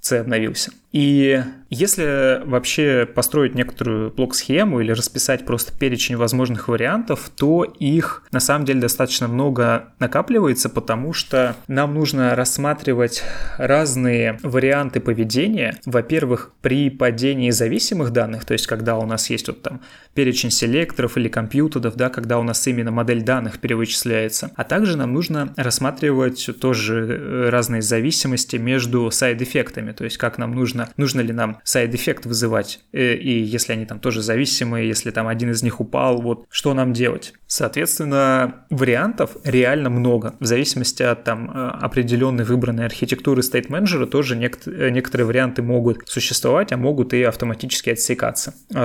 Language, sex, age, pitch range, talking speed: Russian, male, 20-39, 120-135 Hz, 140 wpm